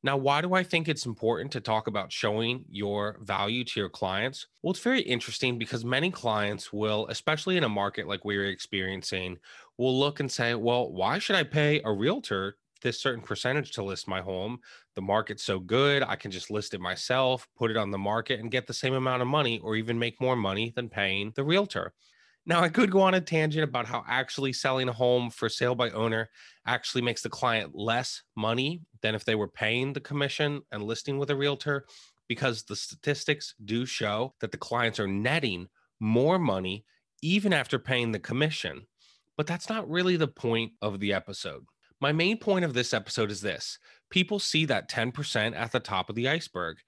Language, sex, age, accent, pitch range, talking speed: English, male, 20-39, American, 110-150 Hz, 205 wpm